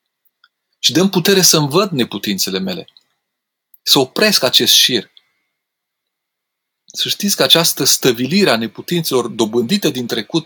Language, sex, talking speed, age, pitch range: Romanian, male, 115 wpm, 30-49, 120-170 Hz